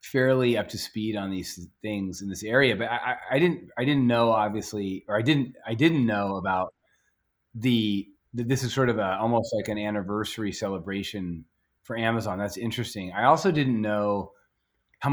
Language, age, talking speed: English, 30-49, 185 wpm